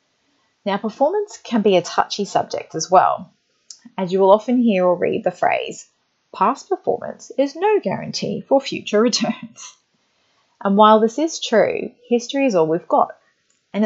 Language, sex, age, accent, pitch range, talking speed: English, female, 30-49, Australian, 175-230 Hz, 160 wpm